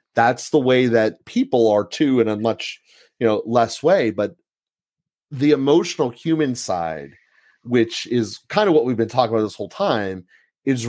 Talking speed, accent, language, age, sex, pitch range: 175 wpm, American, English, 30-49, male, 110-135 Hz